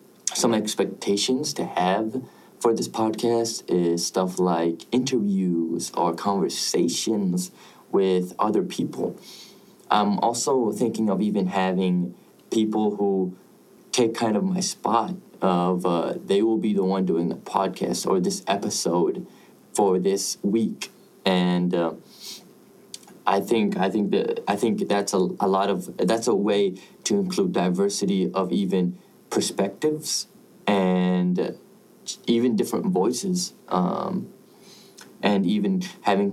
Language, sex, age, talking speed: English, male, 20-39, 125 wpm